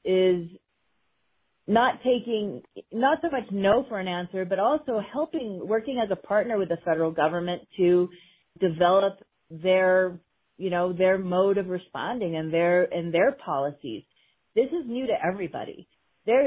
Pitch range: 160-200 Hz